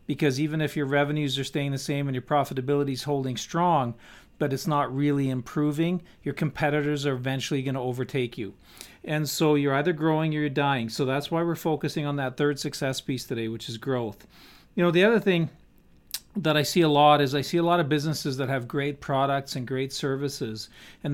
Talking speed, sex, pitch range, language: 210 wpm, male, 135-160 Hz, English